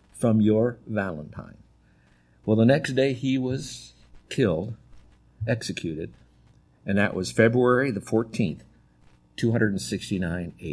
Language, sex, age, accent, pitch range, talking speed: English, male, 50-69, American, 105-140 Hz, 110 wpm